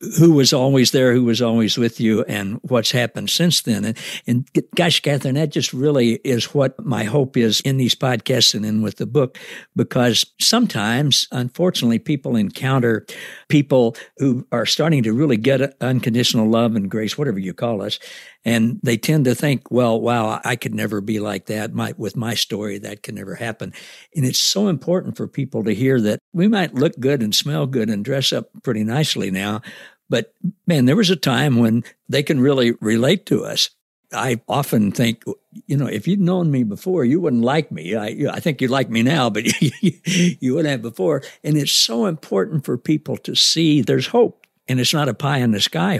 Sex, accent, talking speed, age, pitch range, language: male, American, 195 wpm, 60-79, 115-155 Hz, English